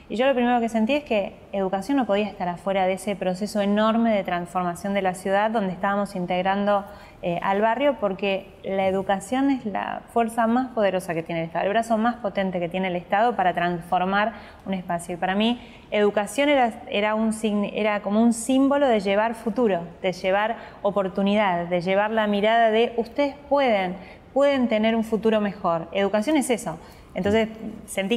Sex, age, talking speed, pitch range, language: female, 20-39, 180 wpm, 195-230 Hz, Spanish